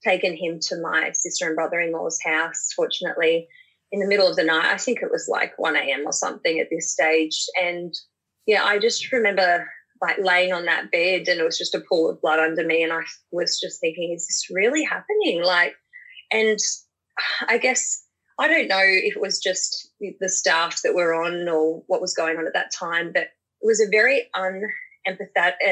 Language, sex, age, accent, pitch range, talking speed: English, female, 20-39, Australian, 180-250 Hz, 200 wpm